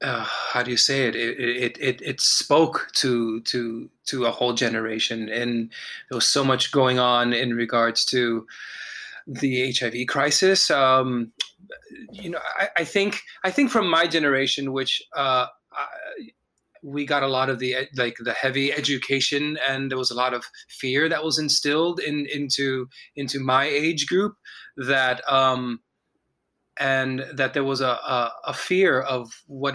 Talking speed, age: 165 wpm, 20-39